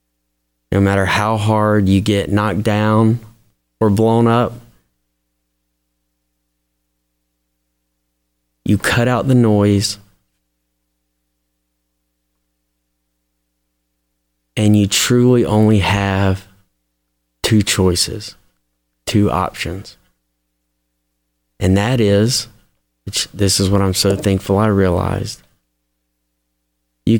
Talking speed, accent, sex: 80 wpm, American, male